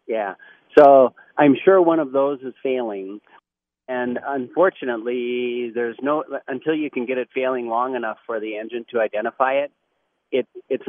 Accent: American